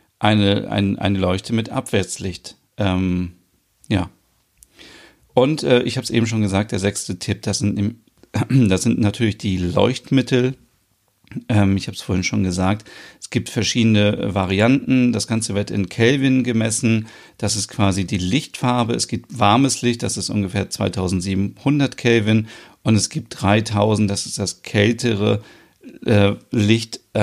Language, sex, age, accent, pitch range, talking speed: German, male, 40-59, German, 100-115 Hz, 150 wpm